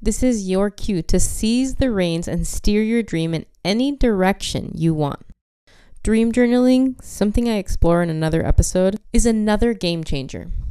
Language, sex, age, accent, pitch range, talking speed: English, female, 20-39, American, 160-225 Hz, 160 wpm